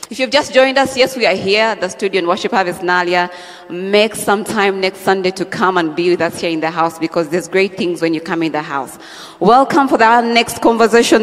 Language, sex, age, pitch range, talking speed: English, female, 30-49, 175-225 Hz, 240 wpm